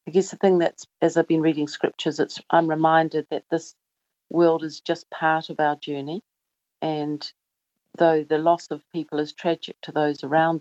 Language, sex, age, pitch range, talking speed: English, female, 50-69, 150-165 Hz, 185 wpm